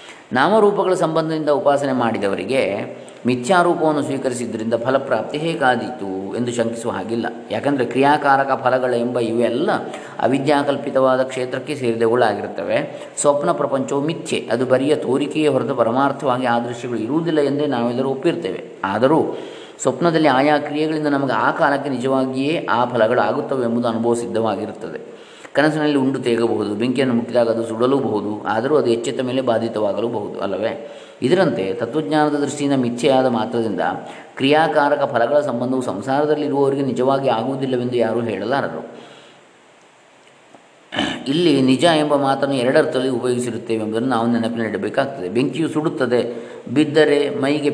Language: Kannada